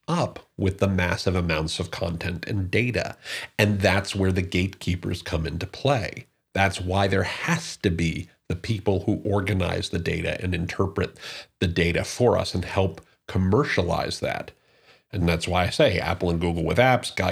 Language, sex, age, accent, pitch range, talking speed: English, male, 40-59, American, 90-110 Hz, 170 wpm